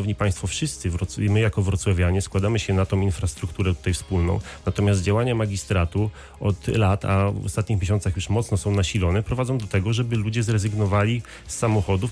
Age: 30-49